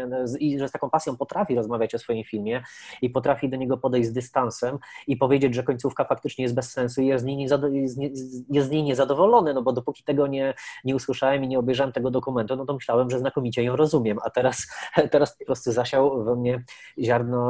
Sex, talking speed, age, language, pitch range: male, 200 wpm, 20-39, Polish, 125-135 Hz